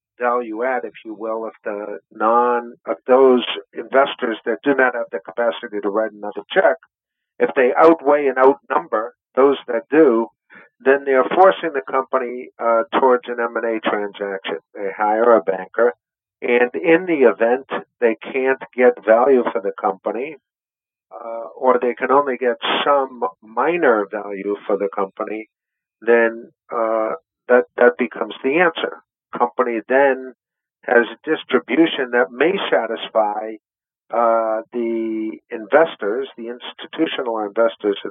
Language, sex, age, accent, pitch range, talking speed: English, male, 50-69, American, 110-135 Hz, 140 wpm